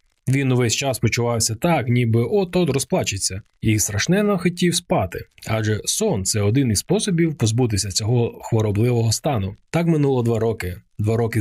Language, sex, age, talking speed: Ukrainian, male, 20-39, 155 wpm